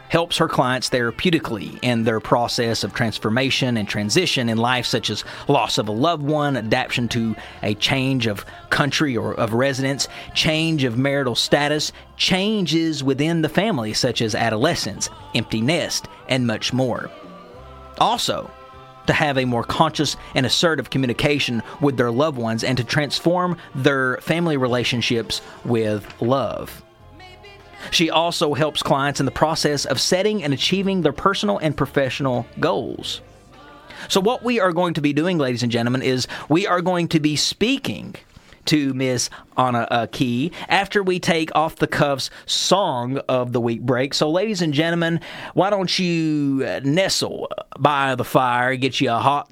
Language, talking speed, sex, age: English, 160 wpm, male, 40-59